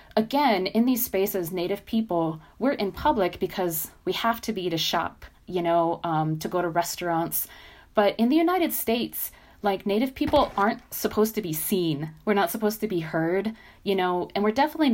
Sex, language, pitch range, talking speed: female, English, 165-205 Hz, 190 wpm